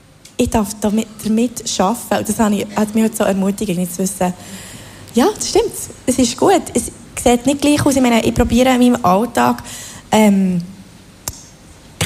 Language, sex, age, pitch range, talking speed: German, female, 20-39, 205-255 Hz, 155 wpm